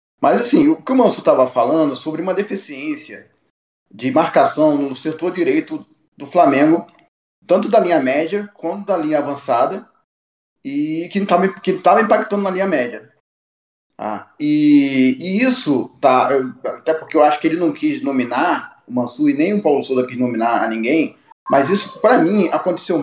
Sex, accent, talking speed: male, Brazilian, 165 wpm